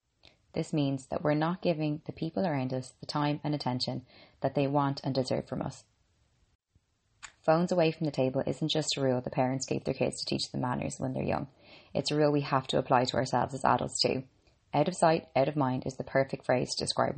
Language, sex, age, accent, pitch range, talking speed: English, female, 20-39, Irish, 130-155 Hz, 230 wpm